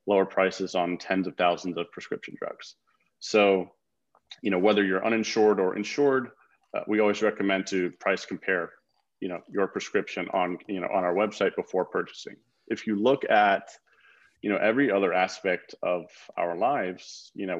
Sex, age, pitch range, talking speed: male, 30-49, 95-110 Hz, 170 wpm